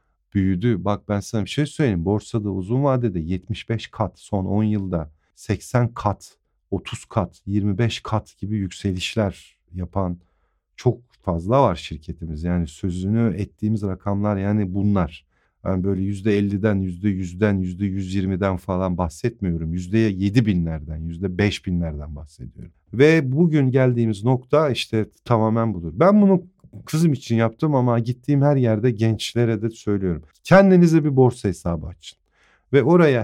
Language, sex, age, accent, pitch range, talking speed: Turkish, male, 50-69, native, 90-125 Hz, 130 wpm